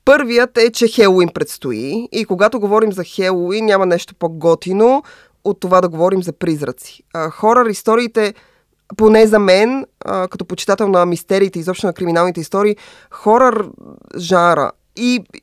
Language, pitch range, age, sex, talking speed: Bulgarian, 160-215 Hz, 20-39, female, 135 wpm